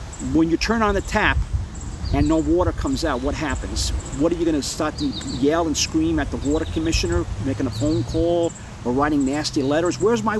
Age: 50-69